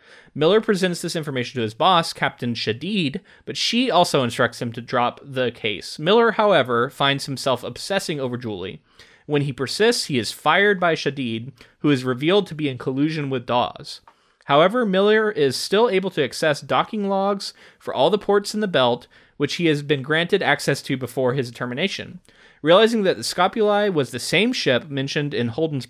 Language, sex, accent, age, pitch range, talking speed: English, male, American, 30-49, 125-180 Hz, 185 wpm